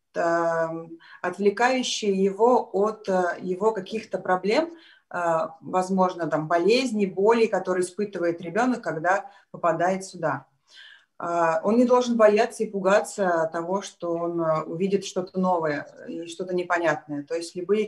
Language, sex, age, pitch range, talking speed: Russian, female, 20-39, 170-205 Hz, 115 wpm